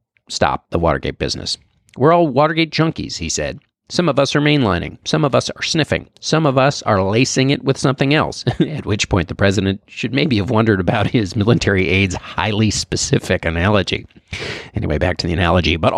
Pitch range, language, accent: 95-145 Hz, English, American